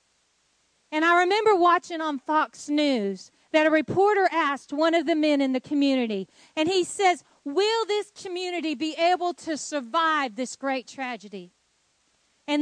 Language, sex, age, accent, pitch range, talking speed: English, female, 40-59, American, 250-335 Hz, 150 wpm